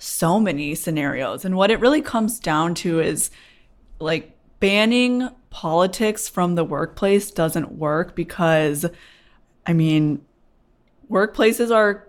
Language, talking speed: English, 120 wpm